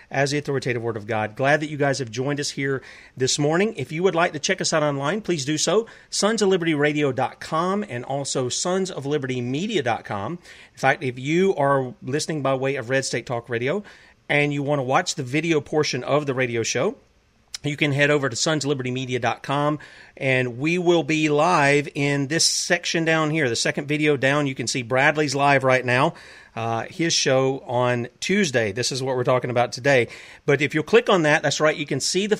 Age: 40-59